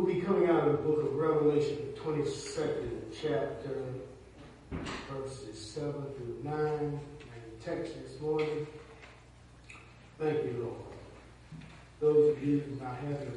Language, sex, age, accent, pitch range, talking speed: English, male, 40-59, American, 120-150 Hz, 135 wpm